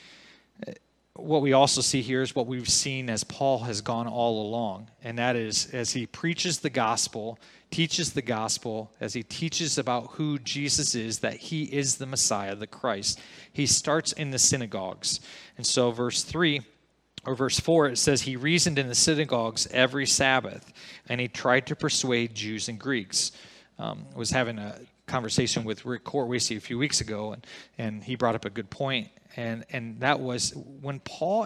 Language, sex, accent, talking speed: English, male, American, 180 wpm